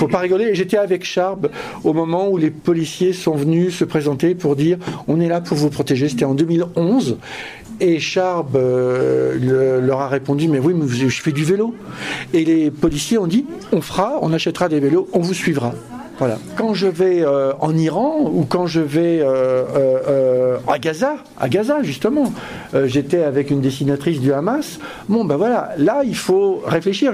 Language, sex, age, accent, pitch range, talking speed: French, male, 50-69, French, 155-210 Hz, 210 wpm